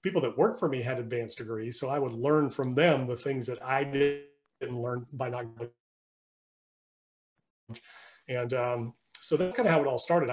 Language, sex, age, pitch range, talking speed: English, male, 40-59, 125-150 Hz, 185 wpm